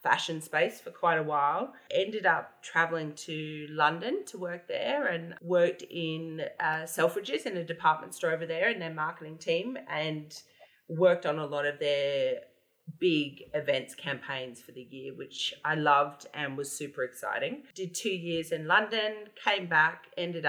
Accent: Australian